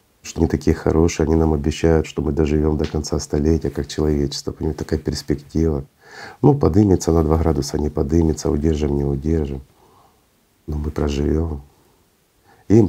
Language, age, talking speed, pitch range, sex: Russian, 50-69, 150 wpm, 75-95 Hz, male